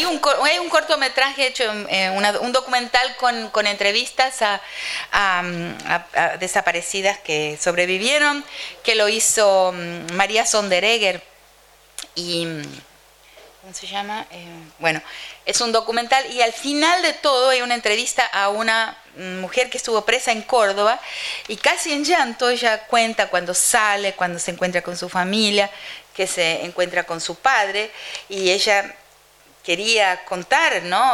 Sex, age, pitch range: female, 30-49, 195-280 Hz